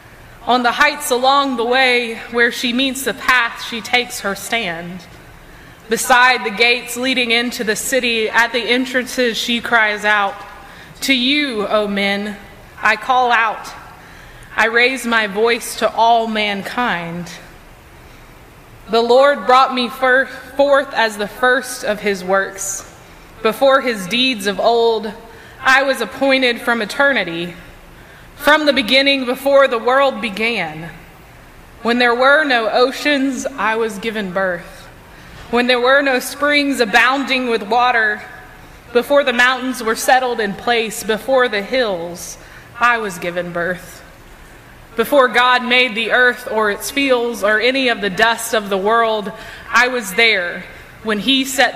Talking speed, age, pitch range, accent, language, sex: 145 wpm, 20-39, 215-255 Hz, American, English, female